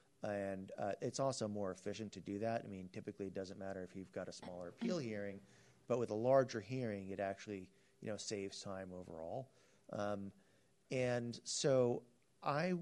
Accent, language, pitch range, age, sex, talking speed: American, English, 95-110 Hz, 30-49, male, 180 wpm